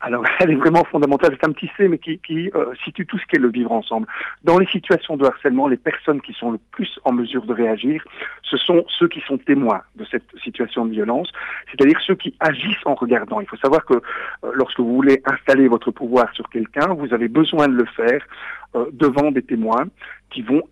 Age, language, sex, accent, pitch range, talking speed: 50-69, French, male, French, 120-170 Hz, 225 wpm